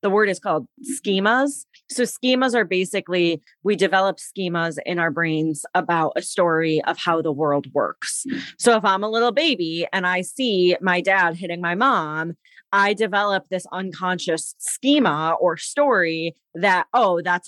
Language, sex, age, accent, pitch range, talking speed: English, female, 30-49, American, 170-220 Hz, 160 wpm